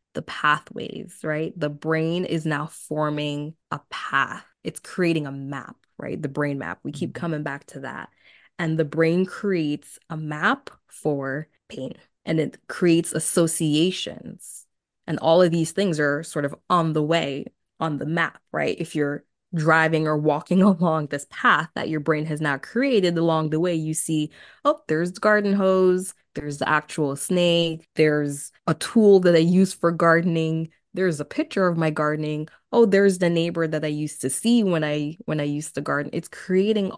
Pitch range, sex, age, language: 150-175 Hz, female, 20-39, English